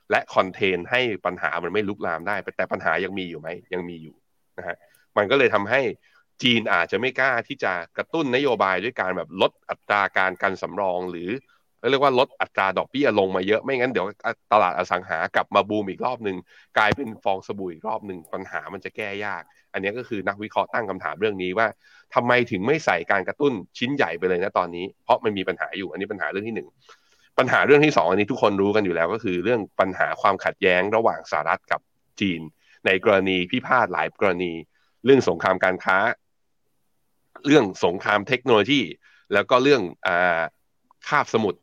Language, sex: Thai, male